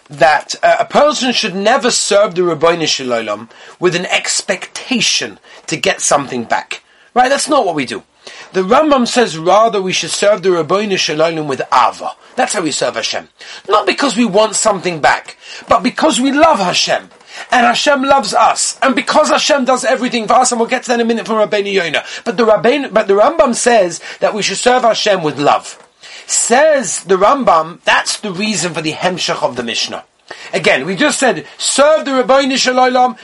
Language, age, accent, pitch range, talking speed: English, 30-49, British, 185-260 Hz, 190 wpm